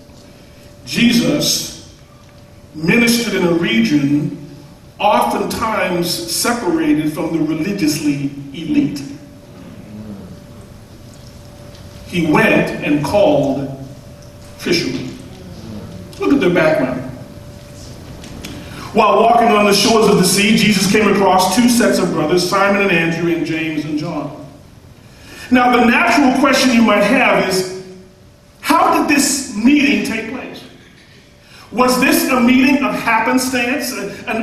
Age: 40-59